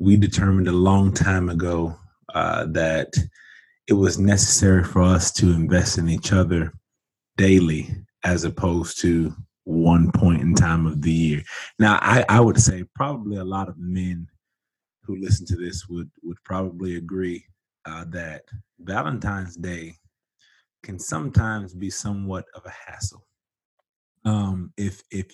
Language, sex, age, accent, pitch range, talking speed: English, male, 30-49, American, 85-100 Hz, 145 wpm